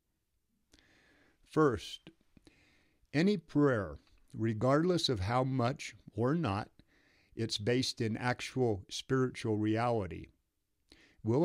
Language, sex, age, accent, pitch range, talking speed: English, male, 50-69, American, 100-125 Hz, 85 wpm